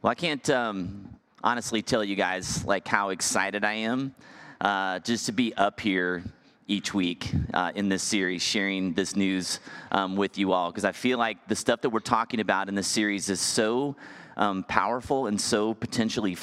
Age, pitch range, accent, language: 30-49, 95-115 Hz, American, English